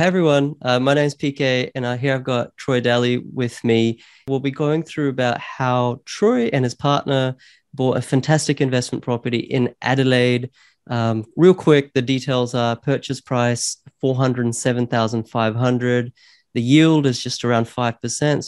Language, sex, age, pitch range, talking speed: English, male, 20-39, 120-140 Hz, 155 wpm